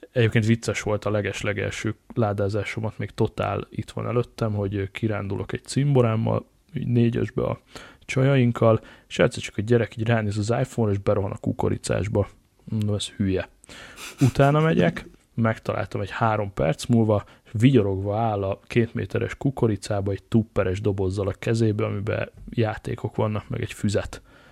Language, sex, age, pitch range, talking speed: Hungarian, male, 20-39, 105-120 Hz, 140 wpm